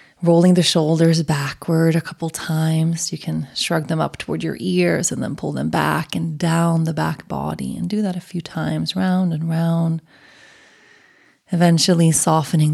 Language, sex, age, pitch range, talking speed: English, female, 20-39, 155-180 Hz, 170 wpm